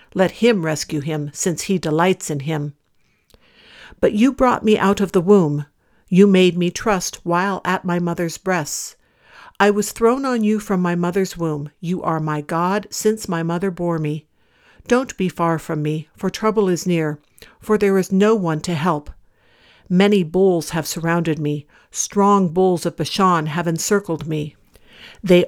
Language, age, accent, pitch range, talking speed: English, 60-79, American, 160-200 Hz, 170 wpm